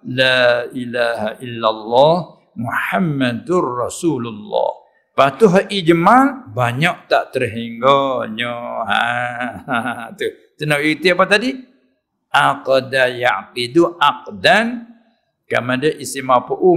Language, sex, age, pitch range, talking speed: Malay, male, 60-79, 130-205 Hz, 80 wpm